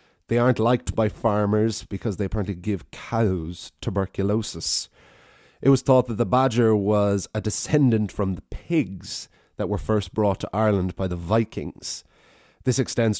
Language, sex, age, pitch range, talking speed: English, male, 30-49, 90-110 Hz, 155 wpm